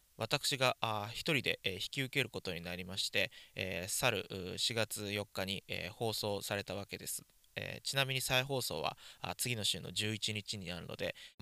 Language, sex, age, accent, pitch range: Japanese, male, 20-39, native, 95-120 Hz